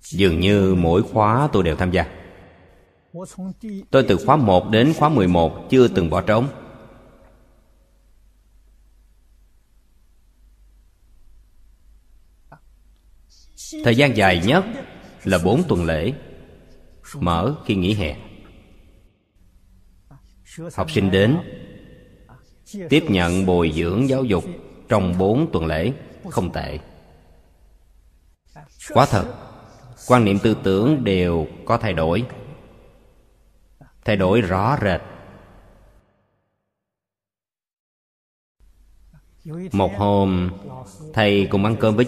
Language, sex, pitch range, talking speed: Vietnamese, male, 85-115 Hz, 95 wpm